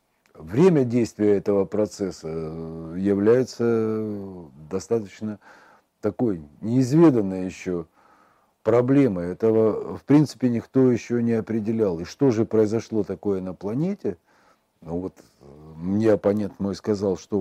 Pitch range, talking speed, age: 85-125 Hz, 105 wpm, 40-59